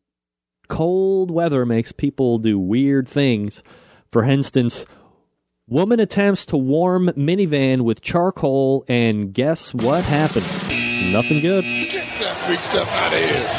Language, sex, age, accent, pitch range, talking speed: English, male, 40-59, American, 105-140 Hz, 100 wpm